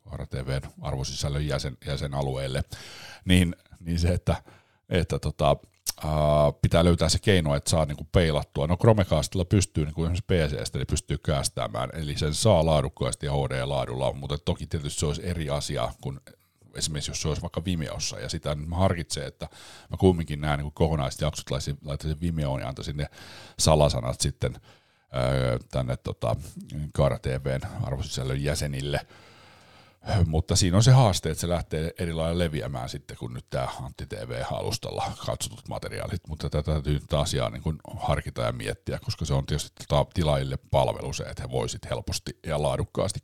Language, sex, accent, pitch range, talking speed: Finnish, male, native, 75-95 Hz, 160 wpm